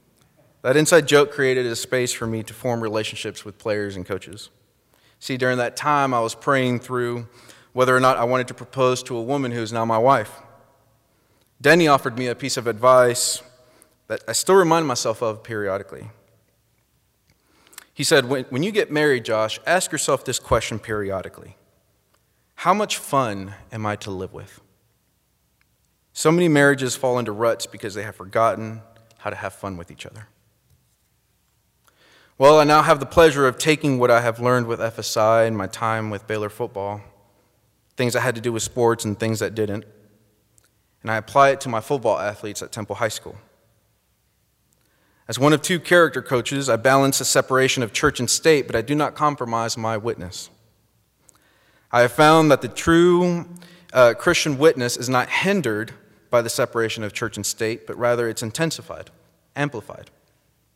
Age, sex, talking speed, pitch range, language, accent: 30-49, male, 175 wpm, 110-135 Hz, English, American